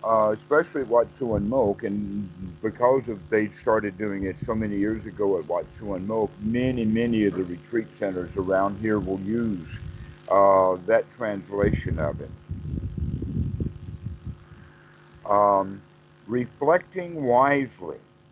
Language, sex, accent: English, male, American